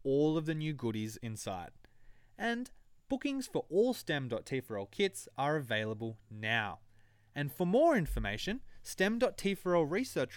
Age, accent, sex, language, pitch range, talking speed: 20-39, Australian, male, English, 115-170 Hz, 120 wpm